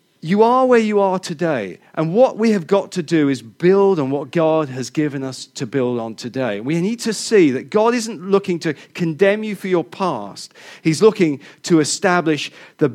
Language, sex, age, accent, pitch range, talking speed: English, male, 40-59, British, 145-195 Hz, 205 wpm